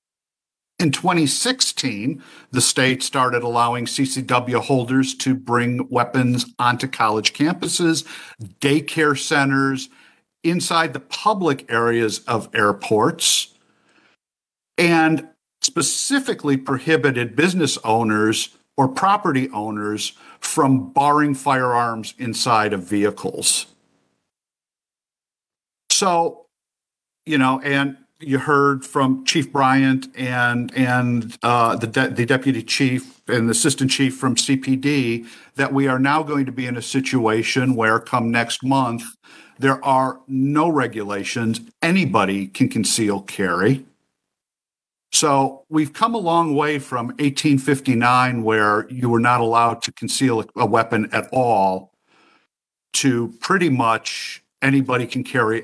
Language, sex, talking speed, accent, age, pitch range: English, male, 115 wpm, American, 50-69, 115-140 Hz